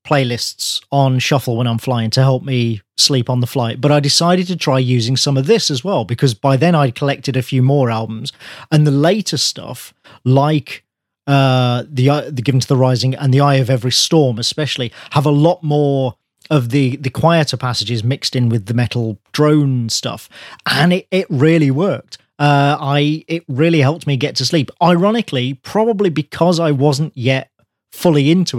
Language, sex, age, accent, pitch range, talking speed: English, male, 40-59, British, 130-160 Hz, 190 wpm